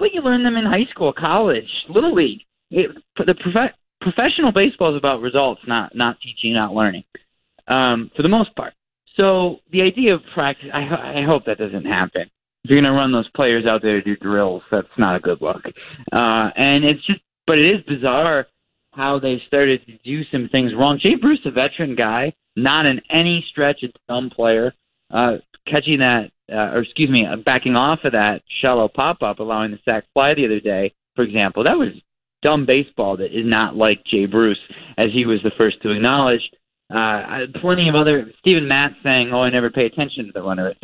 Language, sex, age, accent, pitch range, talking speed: English, male, 30-49, American, 115-155 Hz, 205 wpm